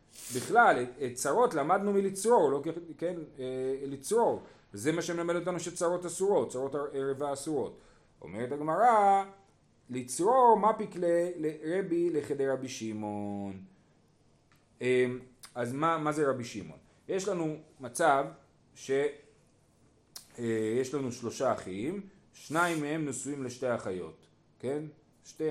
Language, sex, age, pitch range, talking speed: Hebrew, male, 30-49, 130-200 Hz, 105 wpm